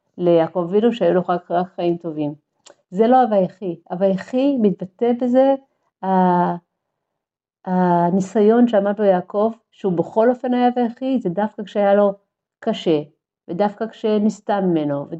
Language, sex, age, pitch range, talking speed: English, female, 50-69, 175-220 Hz, 100 wpm